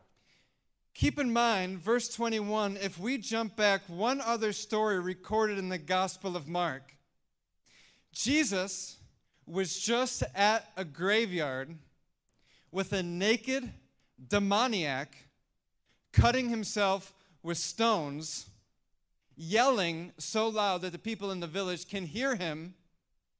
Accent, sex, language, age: American, male, English, 40-59